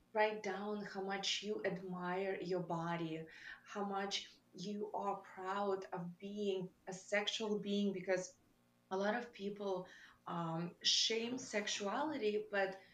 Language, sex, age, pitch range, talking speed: English, female, 20-39, 180-210 Hz, 125 wpm